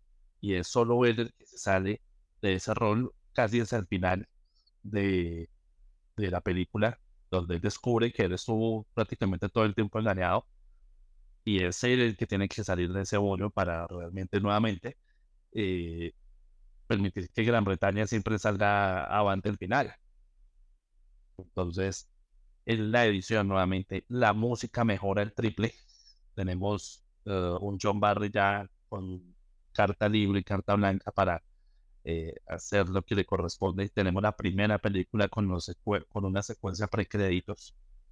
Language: Spanish